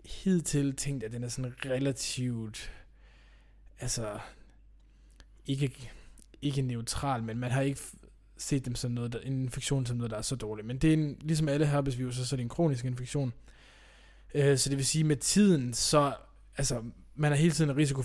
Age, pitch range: 20-39, 120-145 Hz